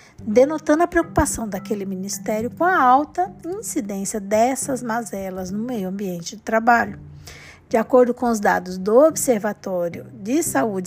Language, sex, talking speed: Portuguese, female, 140 wpm